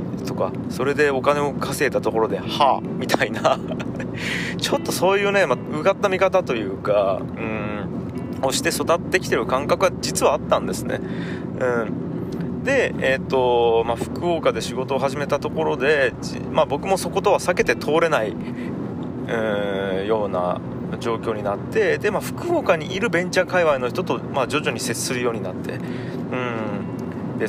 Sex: male